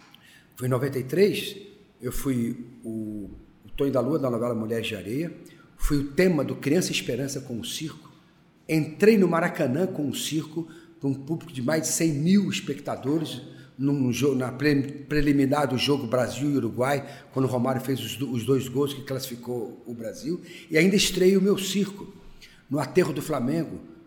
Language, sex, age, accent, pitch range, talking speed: Portuguese, male, 50-69, Brazilian, 130-170 Hz, 175 wpm